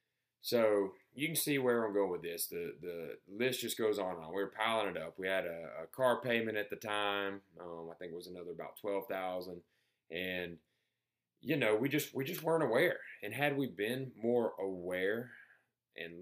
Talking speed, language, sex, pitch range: 205 wpm, English, male, 95-130 Hz